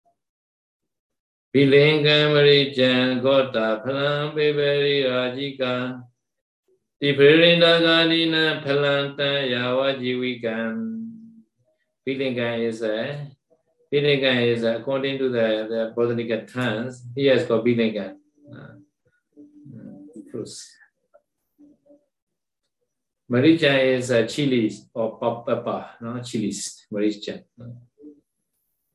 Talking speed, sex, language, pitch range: 55 wpm, male, Vietnamese, 115-145 Hz